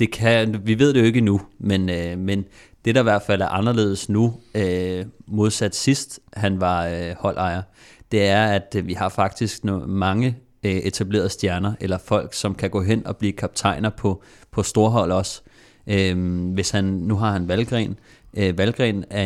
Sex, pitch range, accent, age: male, 95-110 Hz, native, 30-49